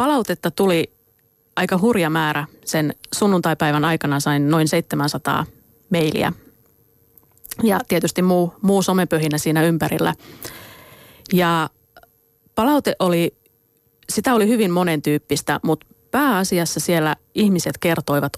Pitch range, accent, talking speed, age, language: 145-175 Hz, native, 100 wpm, 30-49, Finnish